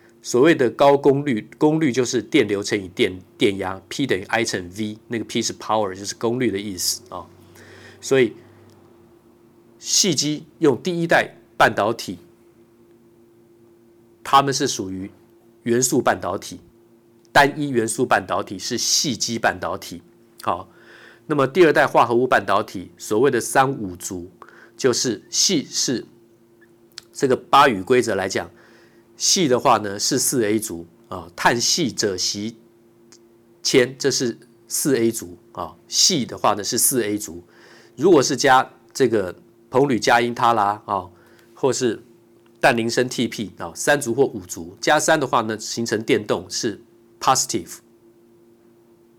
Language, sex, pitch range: Chinese, male, 110-120 Hz